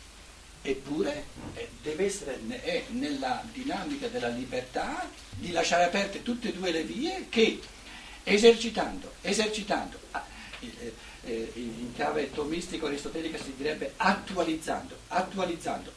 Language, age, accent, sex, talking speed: Italian, 60-79, native, male, 110 wpm